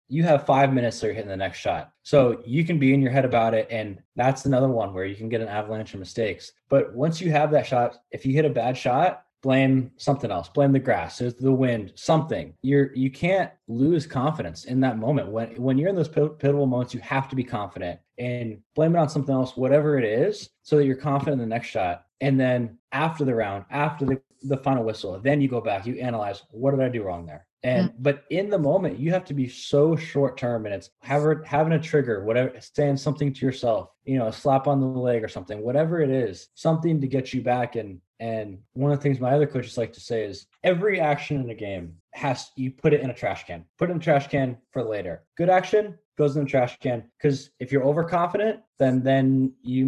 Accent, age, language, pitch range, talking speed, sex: American, 20-39, English, 120-145 Hz, 240 wpm, male